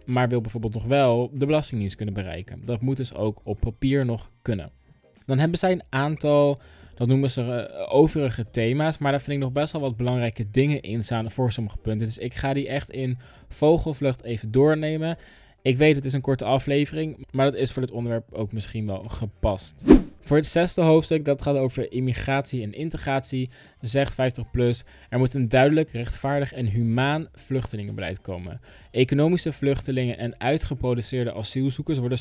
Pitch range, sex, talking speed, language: 115-140 Hz, male, 175 wpm, Dutch